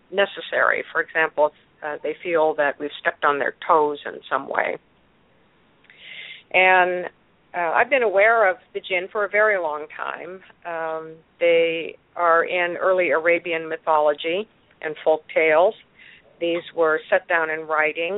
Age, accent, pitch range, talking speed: 50-69, American, 155-185 Hz, 145 wpm